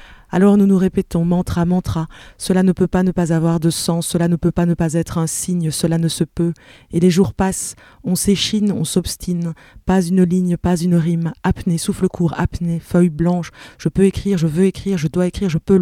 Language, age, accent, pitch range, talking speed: French, 20-39, French, 165-185 Hz, 225 wpm